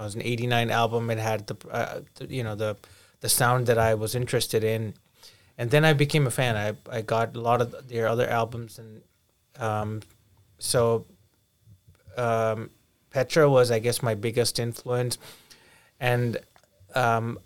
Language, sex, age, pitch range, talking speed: English, male, 30-49, 110-125 Hz, 165 wpm